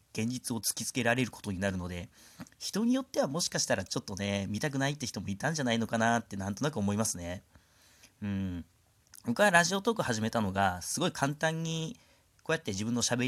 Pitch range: 100-145 Hz